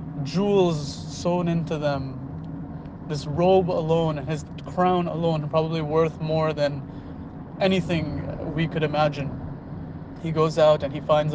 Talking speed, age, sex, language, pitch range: 130 wpm, 30-49, male, English, 140-155 Hz